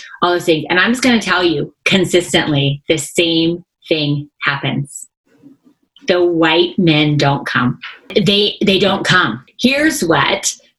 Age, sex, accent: 30-49, female, American